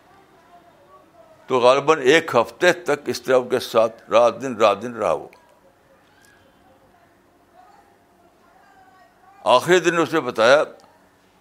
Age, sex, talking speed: 60-79, male, 110 wpm